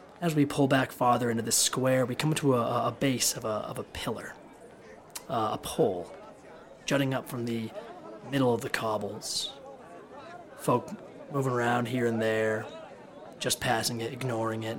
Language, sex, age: English, male, 30-49